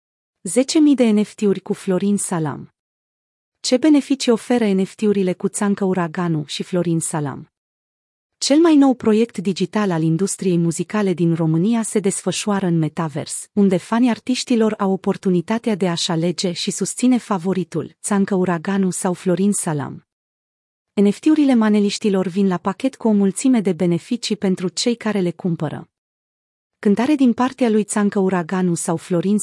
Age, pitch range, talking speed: 30-49, 175-225 Hz, 140 wpm